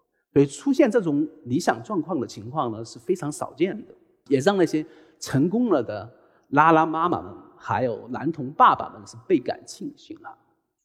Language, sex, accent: Chinese, male, native